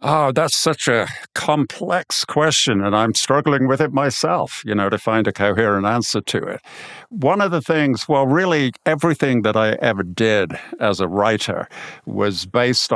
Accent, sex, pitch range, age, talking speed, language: American, male, 100-130 Hz, 50-69, 170 wpm, English